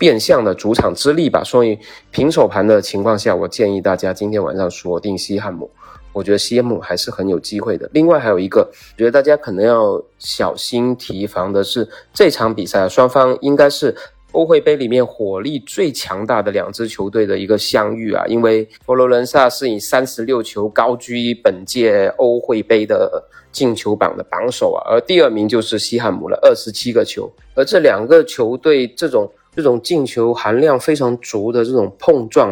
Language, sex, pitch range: Chinese, male, 105-155 Hz